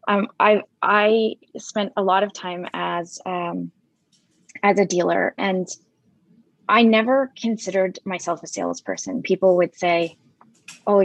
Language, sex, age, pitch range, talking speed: English, female, 20-39, 175-210 Hz, 130 wpm